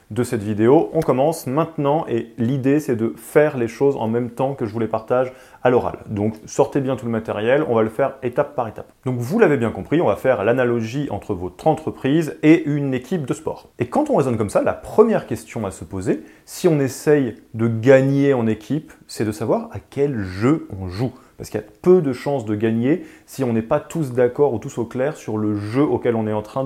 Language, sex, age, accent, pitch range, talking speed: French, male, 30-49, French, 115-145 Hz, 240 wpm